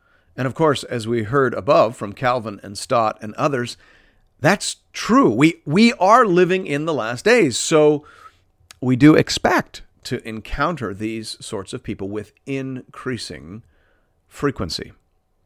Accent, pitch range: American, 100-135 Hz